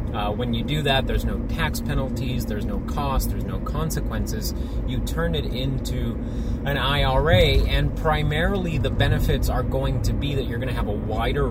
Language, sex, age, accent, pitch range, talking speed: English, male, 30-49, American, 105-120 Hz, 190 wpm